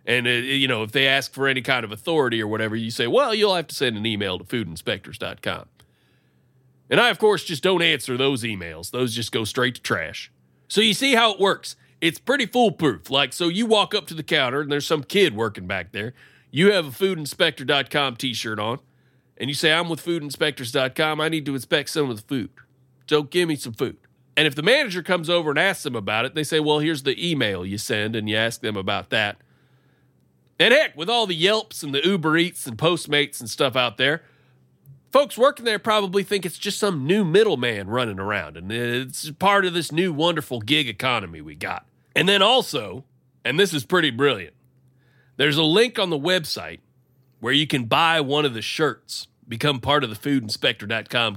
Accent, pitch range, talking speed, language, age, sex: American, 125-175 Hz, 210 wpm, English, 40-59, male